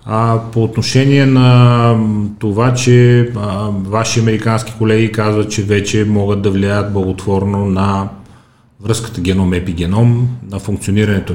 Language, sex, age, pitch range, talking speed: Bulgarian, male, 30-49, 90-115 Hz, 110 wpm